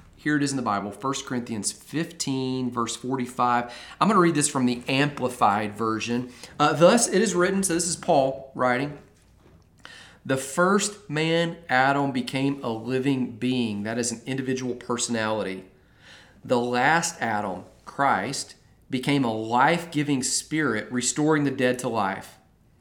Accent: American